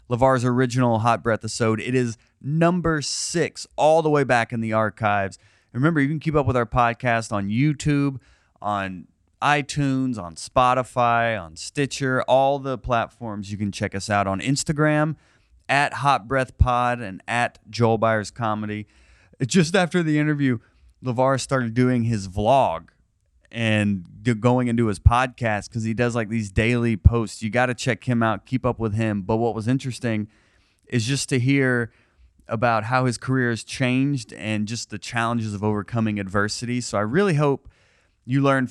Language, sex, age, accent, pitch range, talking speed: English, male, 30-49, American, 105-130 Hz, 165 wpm